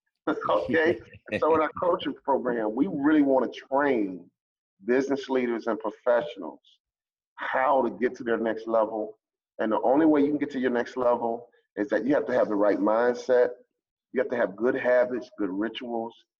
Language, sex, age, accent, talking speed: English, male, 40-59, American, 185 wpm